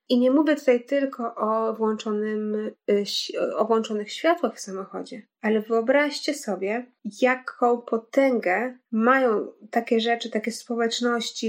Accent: native